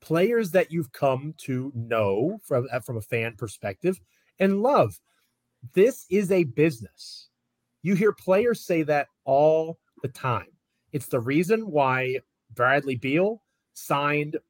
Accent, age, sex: American, 30-49, male